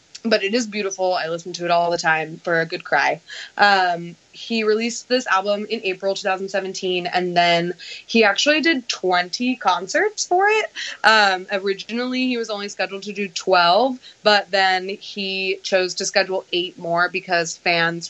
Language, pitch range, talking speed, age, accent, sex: English, 170-205 Hz, 170 wpm, 20-39, American, female